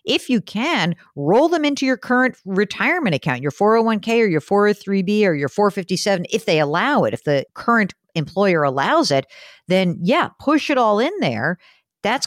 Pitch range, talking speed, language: 155-220 Hz, 175 wpm, English